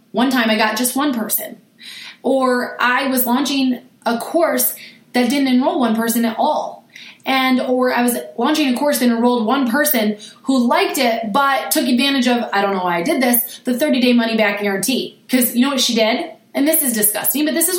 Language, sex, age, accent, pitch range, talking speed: English, female, 20-39, American, 220-265 Hz, 215 wpm